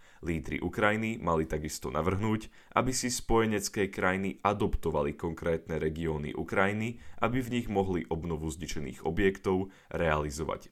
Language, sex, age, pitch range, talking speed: Slovak, male, 10-29, 80-105 Hz, 120 wpm